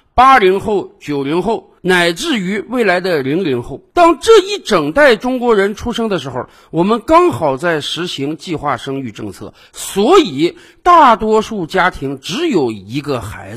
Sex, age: male, 50-69